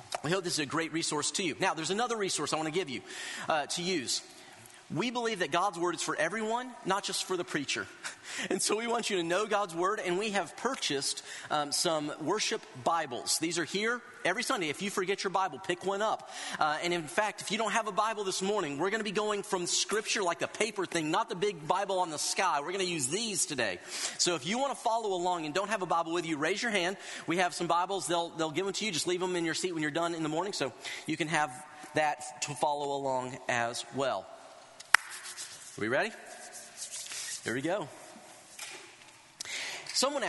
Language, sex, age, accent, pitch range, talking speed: English, male, 40-59, American, 160-205 Hz, 230 wpm